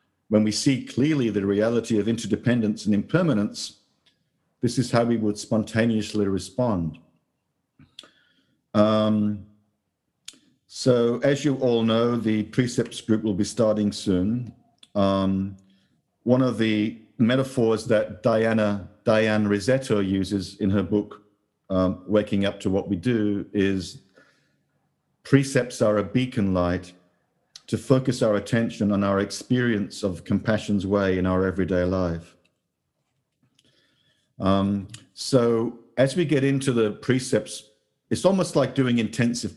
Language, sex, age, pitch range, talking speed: English, male, 50-69, 100-120 Hz, 125 wpm